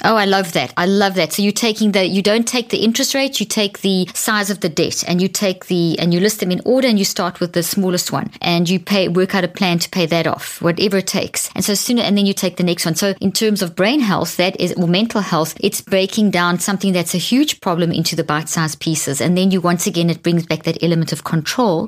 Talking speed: 275 wpm